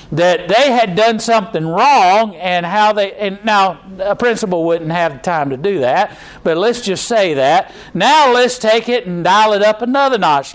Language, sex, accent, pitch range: English, male, American, 180-230 Hz